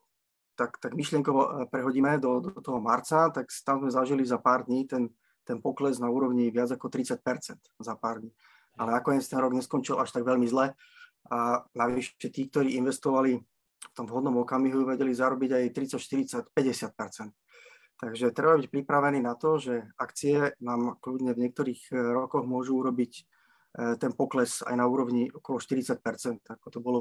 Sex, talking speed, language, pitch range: male, 165 wpm, Slovak, 120-135 Hz